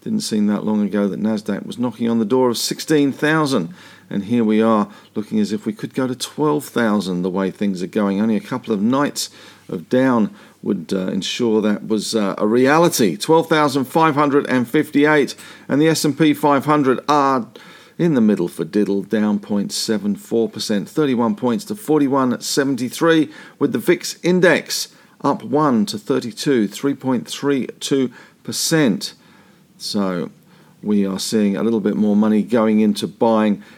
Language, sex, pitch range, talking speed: English, male, 105-140 Hz, 150 wpm